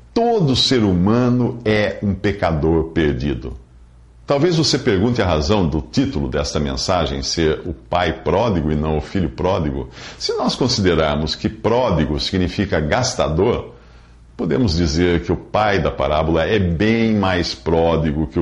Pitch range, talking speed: 75-120 Hz, 145 wpm